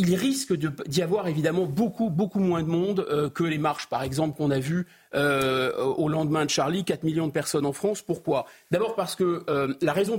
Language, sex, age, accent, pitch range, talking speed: French, male, 40-59, French, 155-205 Hz, 220 wpm